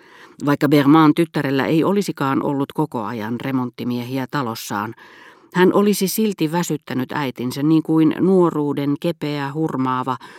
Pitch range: 125-170 Hz